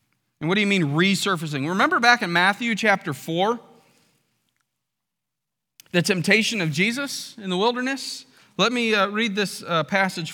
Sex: male